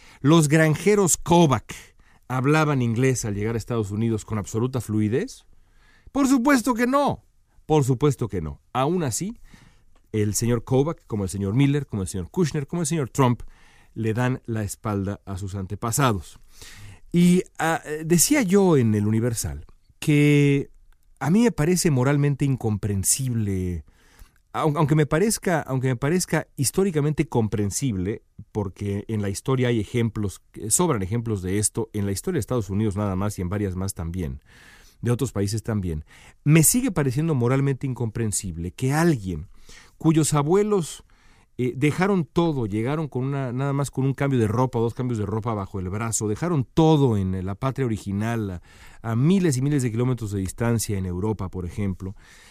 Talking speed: 160 wpm